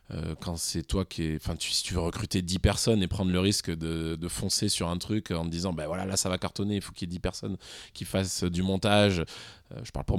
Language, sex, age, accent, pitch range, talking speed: French, male, 20-39, French, 85-105 Hz, 285 wpm